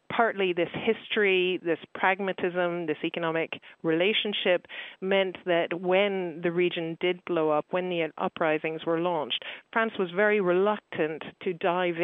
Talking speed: 135 wpm